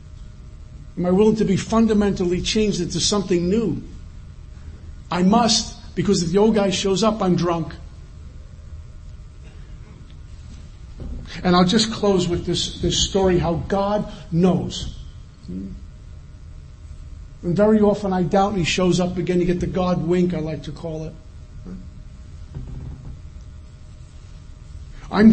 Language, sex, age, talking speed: English, male, 50-69, 125 wpm